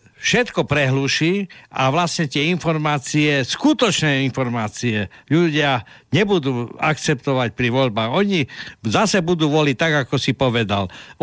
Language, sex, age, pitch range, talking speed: Slovak, male, 60-79, 135-175 Hz, 120 wpm